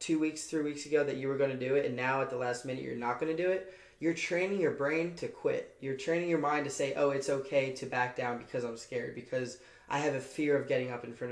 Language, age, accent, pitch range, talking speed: English, 20-39, American, 130-155 Hz, 290 wpm